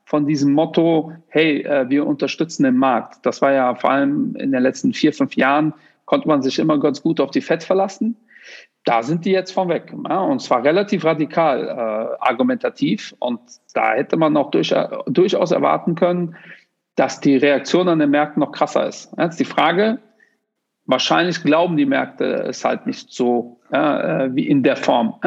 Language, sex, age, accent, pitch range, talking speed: German, male, 50-69, German, 135-205 Hz, 175 wpm